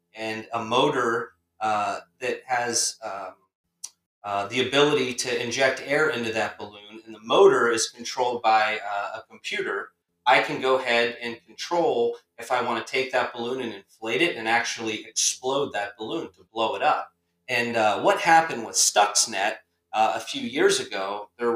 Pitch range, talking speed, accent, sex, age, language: 110-130 Hz, 175 wpm, American, male, 30-49, English